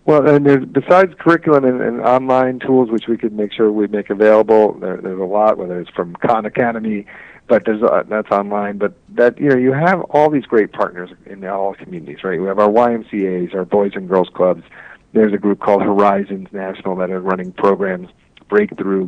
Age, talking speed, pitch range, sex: 50-69, 205 wpm, 95-115 Hz, male